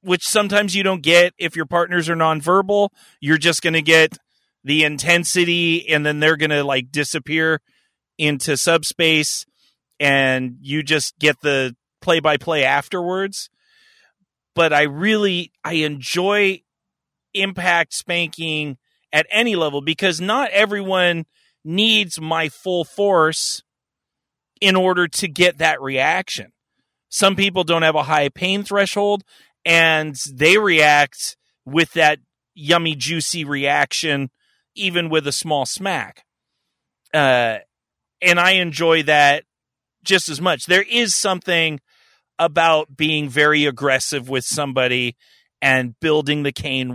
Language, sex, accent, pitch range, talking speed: English, male, American, 135-175 Hz, 130 wpm